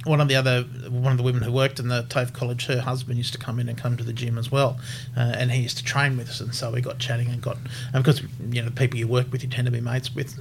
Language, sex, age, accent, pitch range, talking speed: English, male, 30-49, Australian, 125-140 Hz, 330 wpm